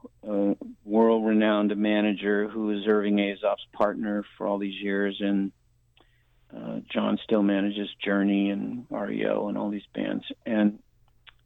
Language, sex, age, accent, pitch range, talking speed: English, male, 50-69, American, 105-120 Hz, 130 wpm